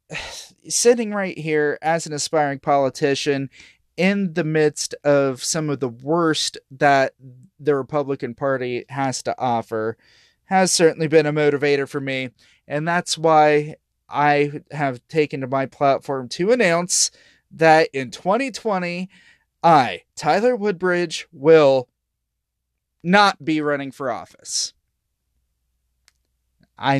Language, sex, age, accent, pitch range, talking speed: English, male, 20-39, American, 125-150 Hz, 120 wpm